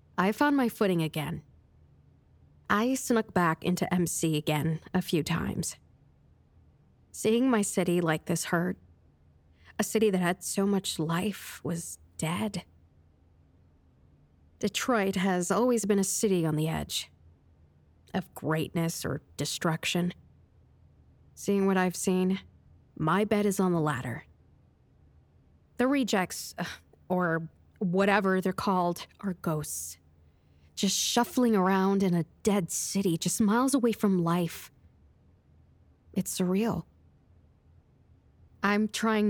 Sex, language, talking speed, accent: female, English, 115 wpm, American